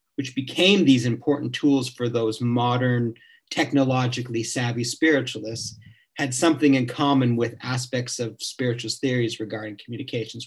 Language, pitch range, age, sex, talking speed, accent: English, 120-145 Hz, 40-59, male, 125 wpm, American